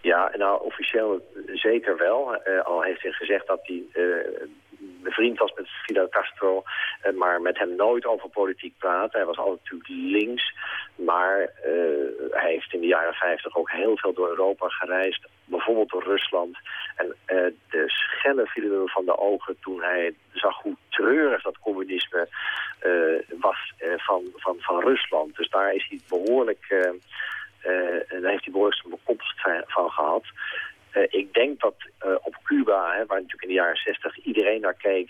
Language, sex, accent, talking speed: Dutch, male, Dutch, 175 wpm